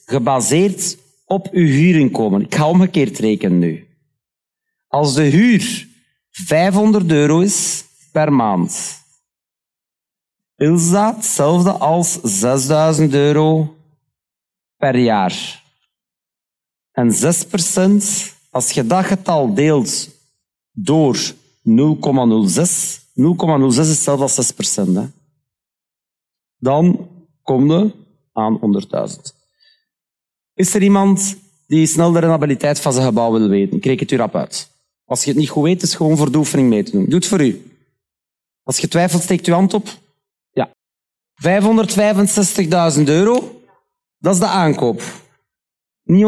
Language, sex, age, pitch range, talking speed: Dutch, male, 50-69, 145-200 Hz, 125 wpm